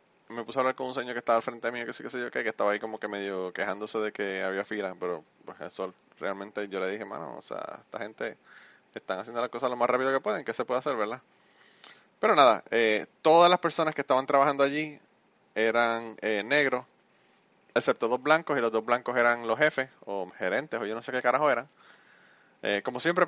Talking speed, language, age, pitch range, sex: 230 wpm, Spanish, 20-39, 110-140 Hz, male